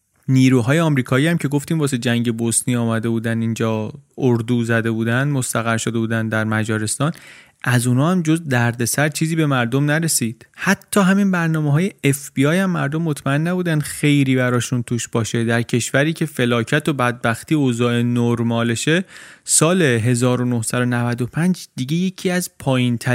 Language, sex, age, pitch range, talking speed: Persian, male, 30-49, 120-155 Hz, 145 wpm